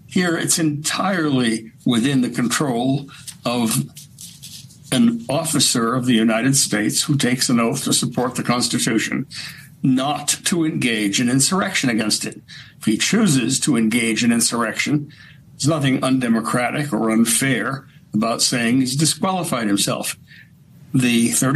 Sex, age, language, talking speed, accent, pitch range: male, 60-79, English, 130 wpm, American, 115-150 Hz